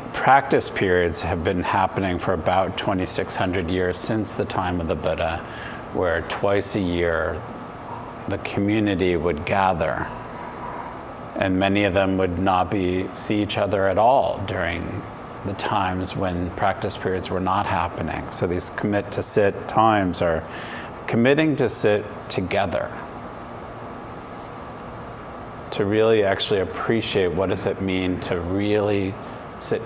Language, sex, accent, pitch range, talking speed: English, male, American, 90-110 Hz, 135 wpm